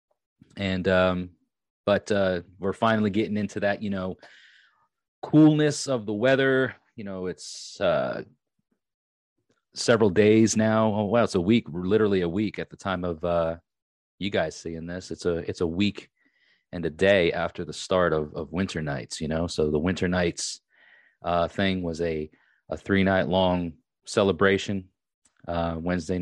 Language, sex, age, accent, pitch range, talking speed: English, male, 30-49, American, 85-110 Hz, 165 wpm